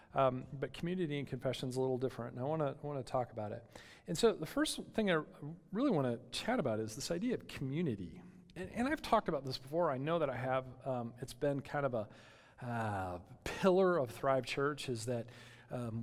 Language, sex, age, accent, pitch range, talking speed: English, male, 40-59, American, 120-155 Hz, 215 wpm